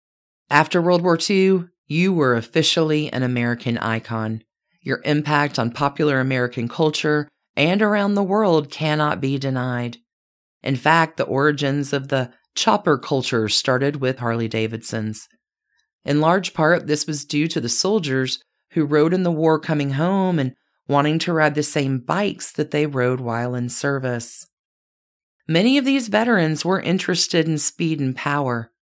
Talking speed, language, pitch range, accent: 150 wpm, English, 125-175 Hz, American